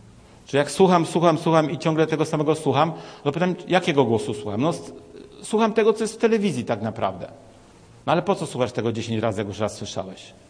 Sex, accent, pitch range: male, native, 135-190 Hz